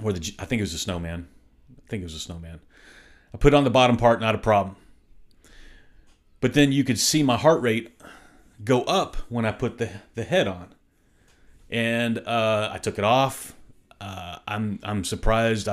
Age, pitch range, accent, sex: 30-49, 100-115 Hz, American, male